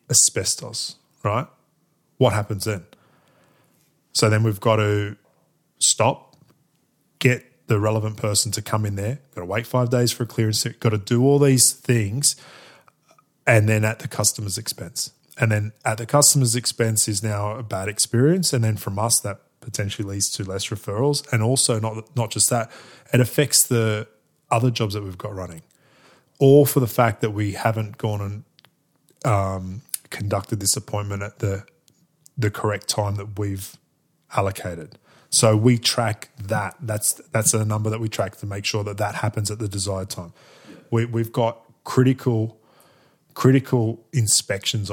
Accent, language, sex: Australian, English, male